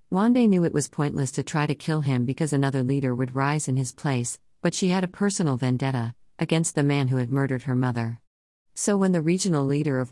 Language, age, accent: English, 50-69, American